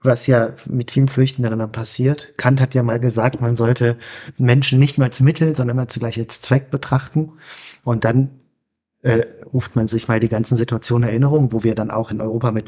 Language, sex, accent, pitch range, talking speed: German, male, German, 120-135 Hz, 205 wpm